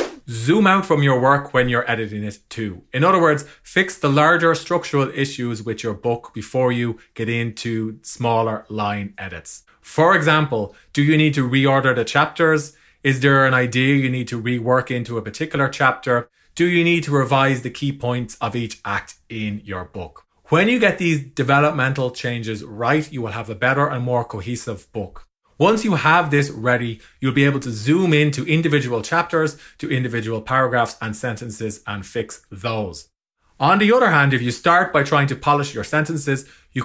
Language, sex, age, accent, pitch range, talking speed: English, male, 30-49, Irish, 115-155 Hz, 185 wpm